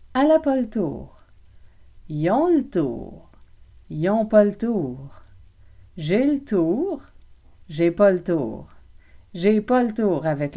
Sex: female